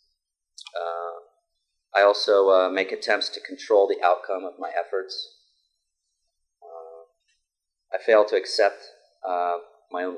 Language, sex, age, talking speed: English, male, 40-59, 125 wpm